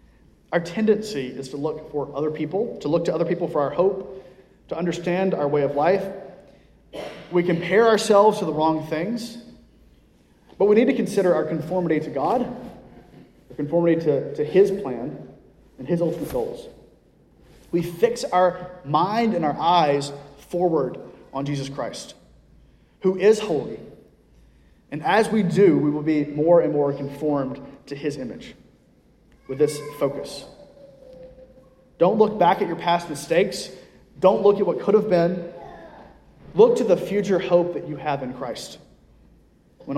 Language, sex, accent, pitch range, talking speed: English, male, American, 150-190 Hz, 155 wpm